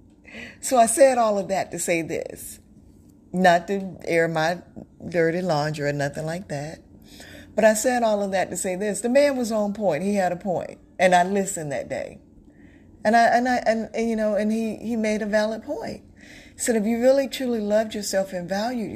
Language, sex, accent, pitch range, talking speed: English, female, American, 160-215 Hz, 210 wpm